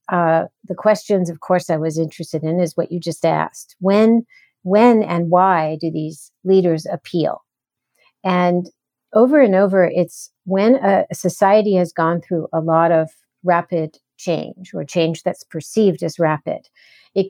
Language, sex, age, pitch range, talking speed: English, female, 50-69, 165-195 Hz, 160 wpm